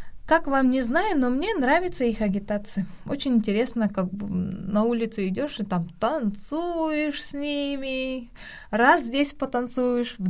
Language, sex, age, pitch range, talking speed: Russian, female, 20-39, 190-275 Hz, 145 wpm